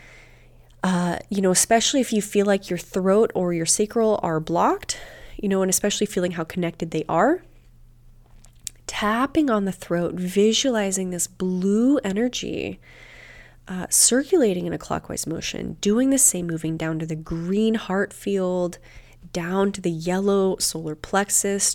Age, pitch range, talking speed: 20-39, 175-215 Hz, 150 wpm